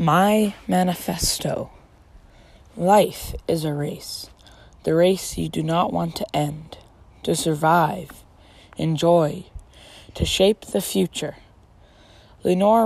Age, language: 20-39, English